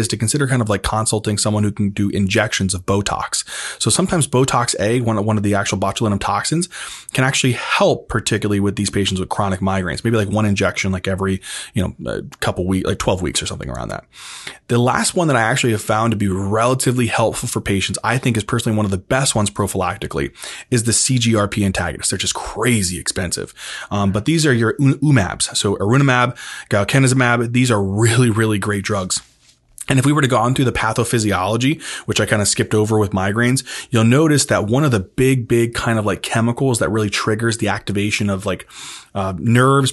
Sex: male